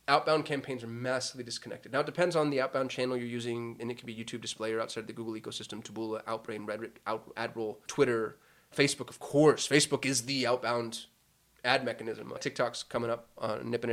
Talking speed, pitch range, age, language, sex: 190 wpm, 115-140 Hz, 20-39, English, male